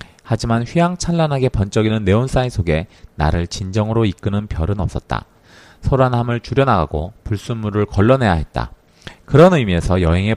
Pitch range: 90-130 Hz